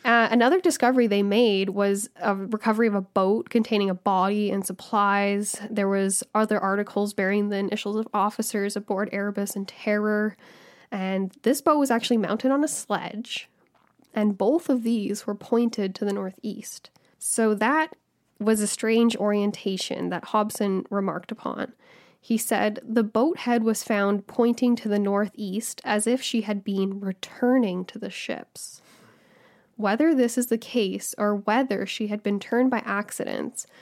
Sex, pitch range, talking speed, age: female, 195-230 Hz, 160 wpm, 10-29